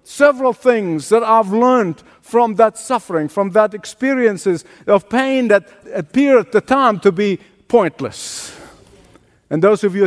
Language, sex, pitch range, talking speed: English, male, 195-250 Hz, 150 wpm